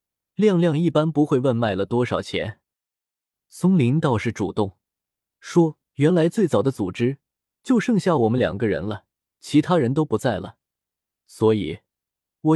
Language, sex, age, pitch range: Chinese, male, 20-39, 105-150 Hz